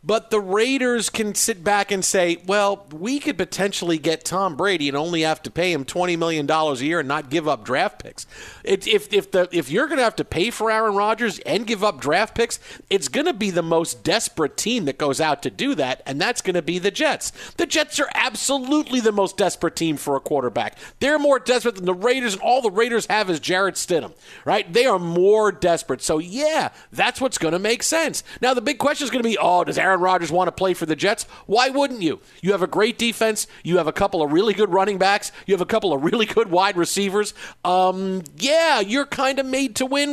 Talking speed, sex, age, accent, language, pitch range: 240 wpm, male, 50-69, American, English, 180-245 Hz